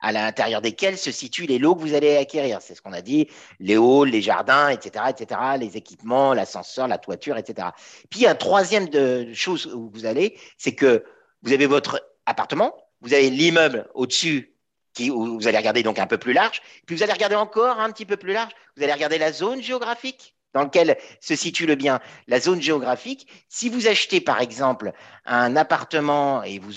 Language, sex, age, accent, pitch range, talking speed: French, male, 50-69, French, 120-180 Hz, 200 wpm